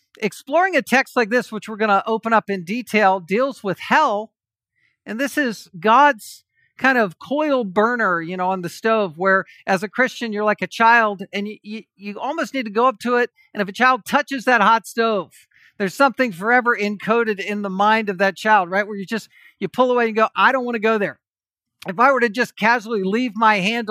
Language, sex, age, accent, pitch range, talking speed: English, male, 50-69, American, 195-250 Hz, 225 wpm